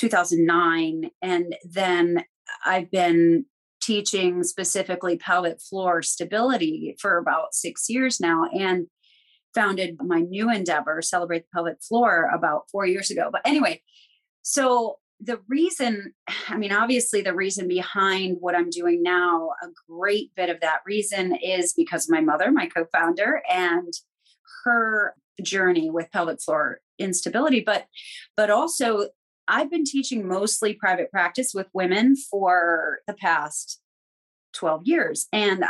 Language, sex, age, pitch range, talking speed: English, female, 30-49, 175-230 Hz, 135 wpm